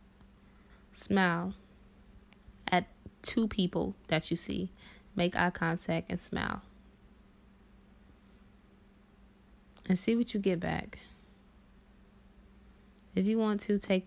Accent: American